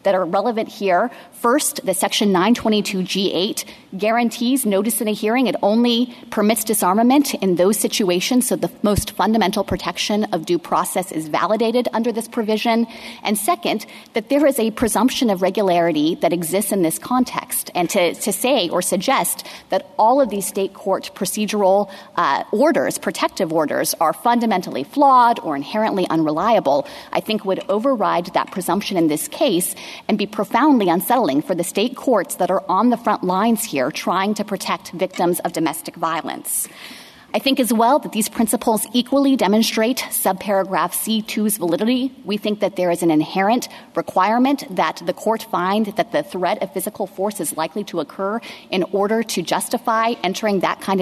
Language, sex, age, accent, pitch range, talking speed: English, female, 30-49, American, 185-235 Hz, 165 wpm